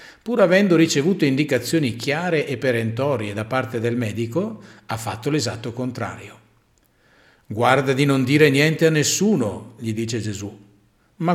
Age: 50-69